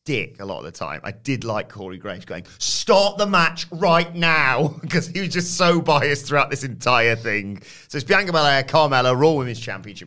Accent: British